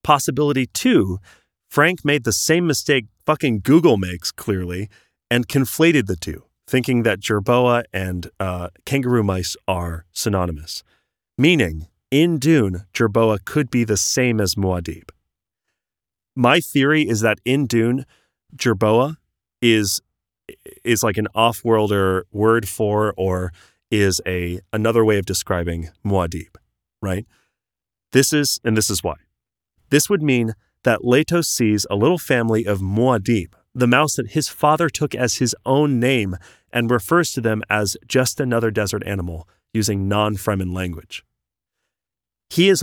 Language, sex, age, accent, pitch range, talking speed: English, male, 30-49, American, 95-130 Hz, 135 wpm